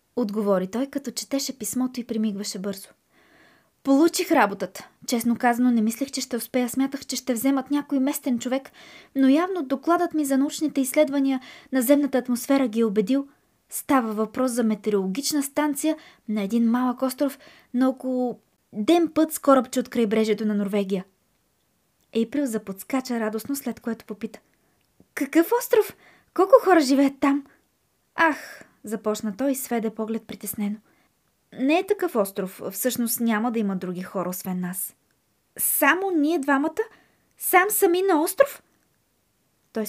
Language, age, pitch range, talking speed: Bulgarian, 20-39, 220-285 Hz, 145 wpm